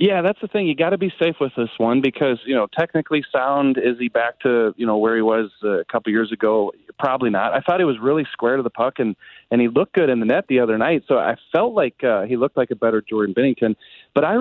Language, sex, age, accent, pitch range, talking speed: English, male, 40-59, American, 110-135 Hz, 280 wpm